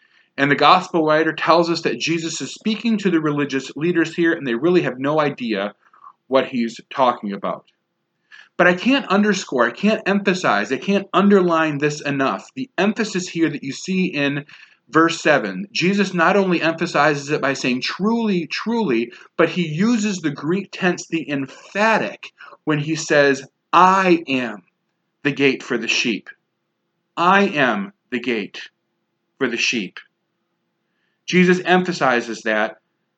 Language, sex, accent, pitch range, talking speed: English, male, American, 140-185 Hz, 150 wpm